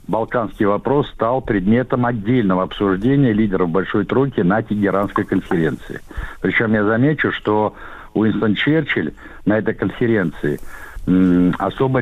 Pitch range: 95-120 Hz